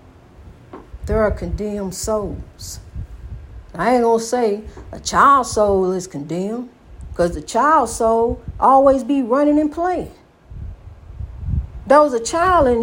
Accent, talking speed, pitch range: American, 130 wpm, 205-275 Hz